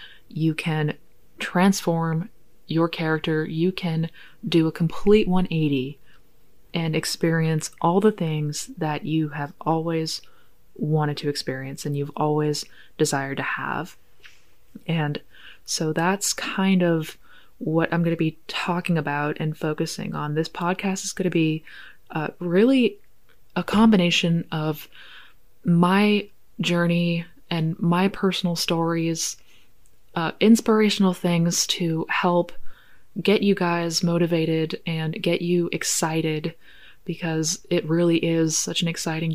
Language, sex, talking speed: English, female, 125 wpm